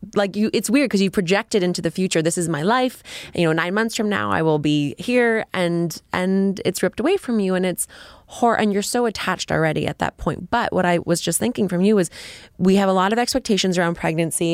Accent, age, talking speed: American, 20-39, 245 wpm